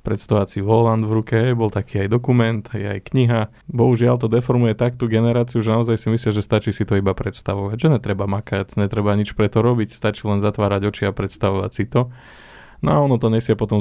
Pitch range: 100-115 Hz